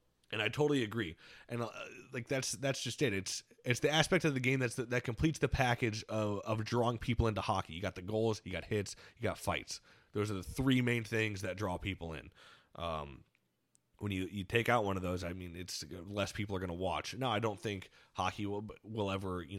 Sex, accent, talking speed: male, American, 235 wpm